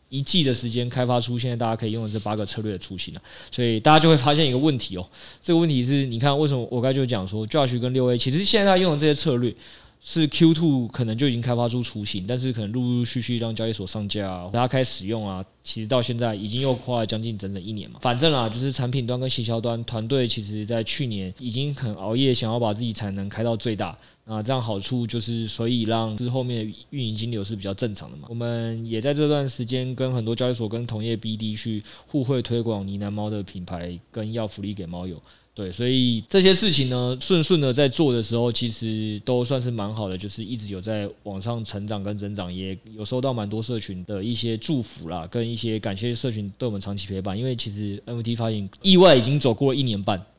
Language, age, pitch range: Chinese, 20-39, 105-125 Hz